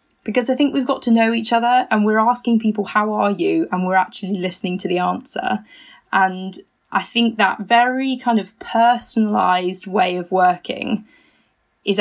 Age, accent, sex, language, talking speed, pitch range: 20-39, British, female, English, 175 wpm, 195-245 Hz